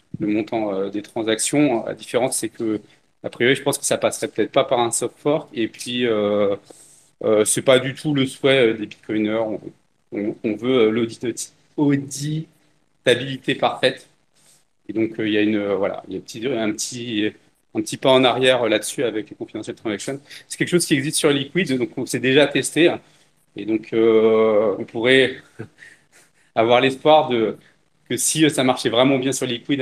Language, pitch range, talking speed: French, 110-145 Hz, 185 wpm